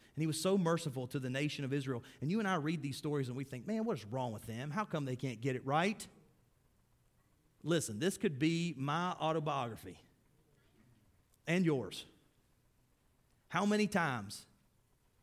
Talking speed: 175 wpm